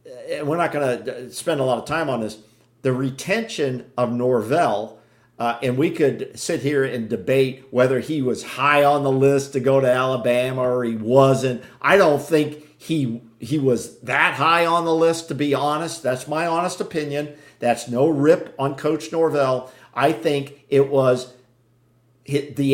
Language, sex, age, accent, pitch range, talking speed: English, male, 50-69, American, 130-165 Hz, 175 wpm